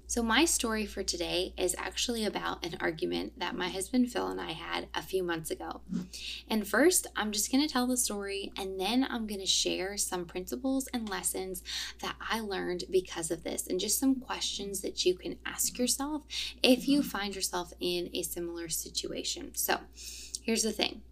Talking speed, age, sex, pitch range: 185 wpm, 10-29, female, 180-235 Hz